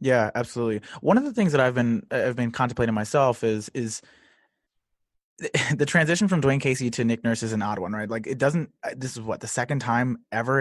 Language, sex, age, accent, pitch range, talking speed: English, male, 20-39, American, 120-155 Hz, 215 wpm